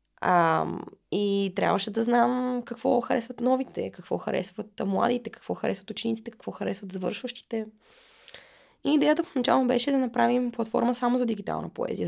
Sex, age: female, 20-39